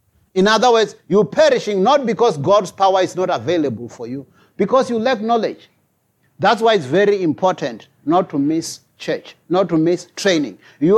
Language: English